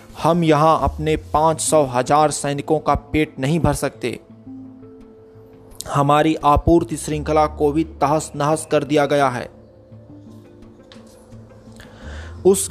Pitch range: 130-155 Hz